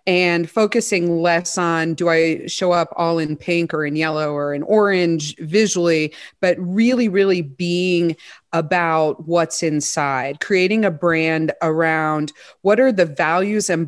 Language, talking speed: English, 145 wpm